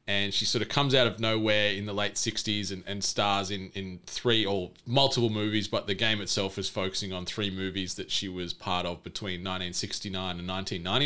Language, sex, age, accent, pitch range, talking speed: English, male, 20-39, Australian, 100-120 Hz, 200 wpm